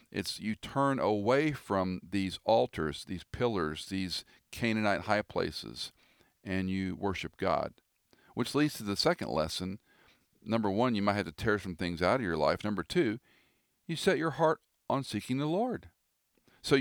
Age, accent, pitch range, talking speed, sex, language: 50-69, American, 90-115 Hz, 170 wpm, male, English